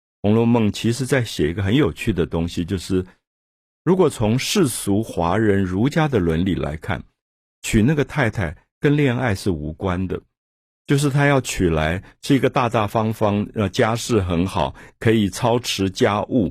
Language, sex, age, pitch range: Chinese, male, 50-69, 85-120 Hz